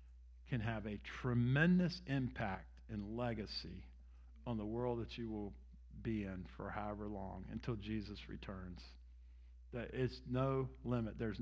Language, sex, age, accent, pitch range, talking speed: English, male, 50-69, American, 95-155 Hz, 135 wpm